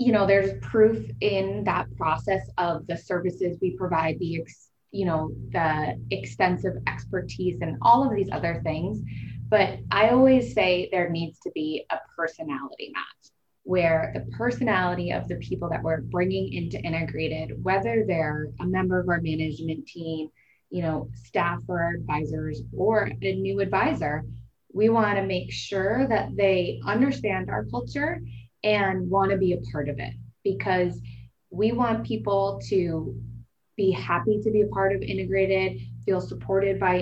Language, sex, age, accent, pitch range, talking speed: English, female, 20-39, American, 135-195 Hz, 155 wpm